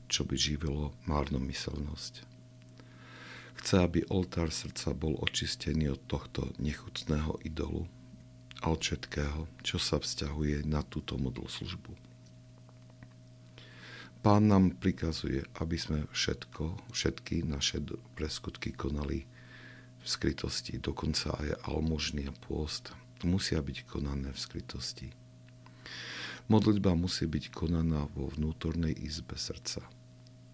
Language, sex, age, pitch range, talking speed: Slovak, male, 50-69, 75-100 Hz, 105 wpm